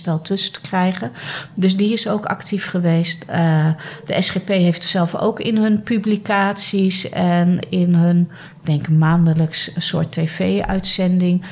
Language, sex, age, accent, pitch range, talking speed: Dutch, female, 40-59, Dutch, 155-185 Hz, 140 wpm